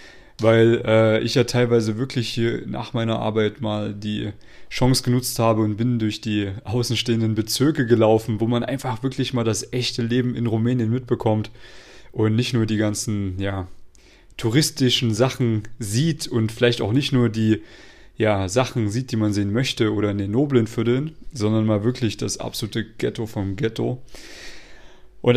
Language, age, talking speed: German, 30-49, 165 wpm